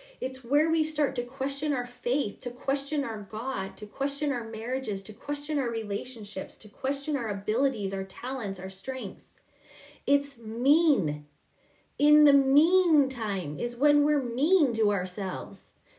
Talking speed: 145 wpm